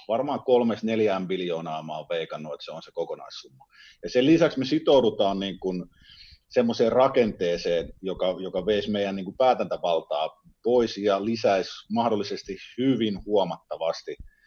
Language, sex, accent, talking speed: Finnish, male, native, 130 wpm